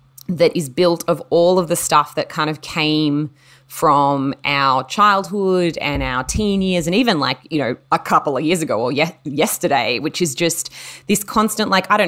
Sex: female